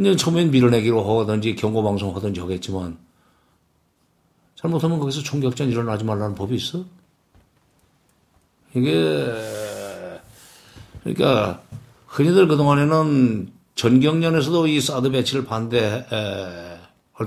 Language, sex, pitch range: Korean, male, 105-145 Hz